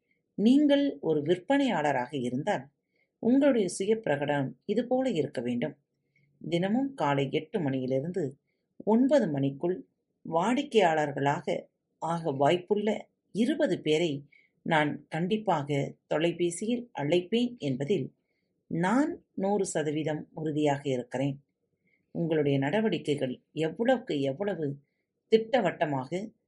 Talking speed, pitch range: 80 wpm, 145-230 Hz